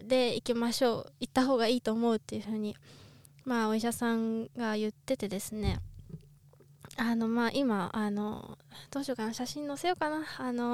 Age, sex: 20-39, female